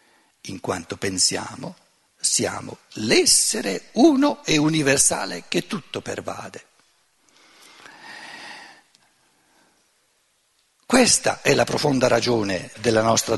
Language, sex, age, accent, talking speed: Italian, male, 60-79, native, 80 wpm